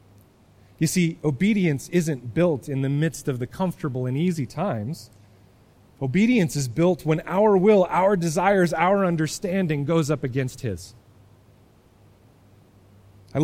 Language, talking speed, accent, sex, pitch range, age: English, 130 wpm, American, male, 115-190 Hz, 30-49